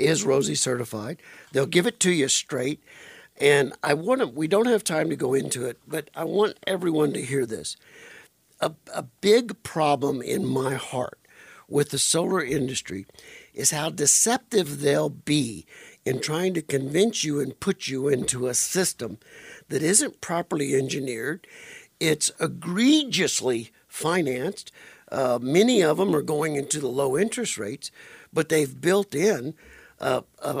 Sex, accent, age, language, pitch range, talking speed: male, American, 60-79, English, 140-195 Hz, 155 wpm